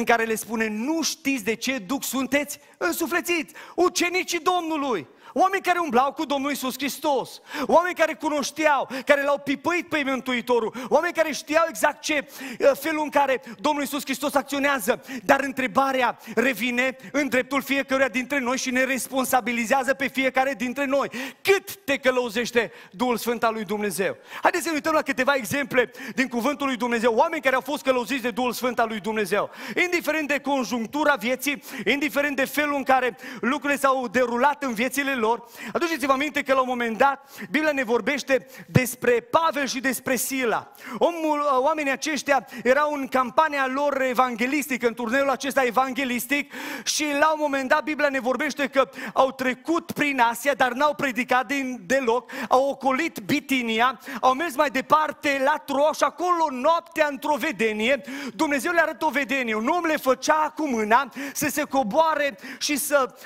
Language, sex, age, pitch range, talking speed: Romanian, male, 30-49, 255-295 Hz, 165 wpm